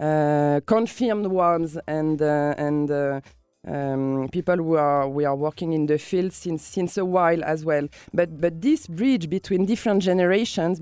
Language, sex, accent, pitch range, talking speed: English, female, French, 150-205 Hz, 165 wpm